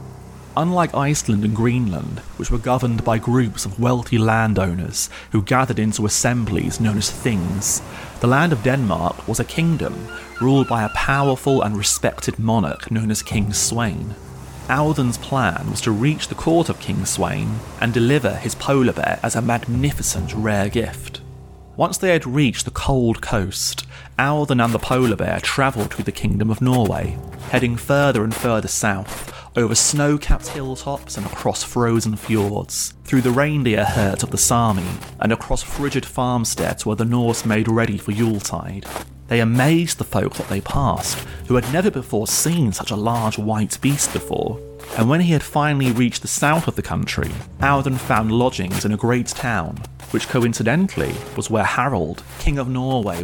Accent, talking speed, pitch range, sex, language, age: British, 170 wpm, 105-130 Hz, male, English, 30-49